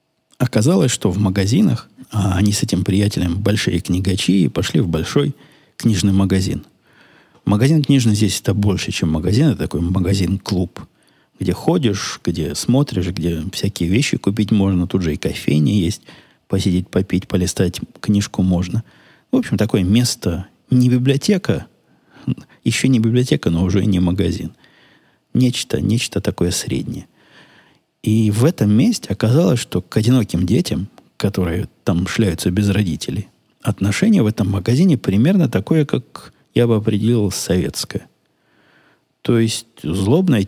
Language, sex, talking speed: Russian, male, 130 wpm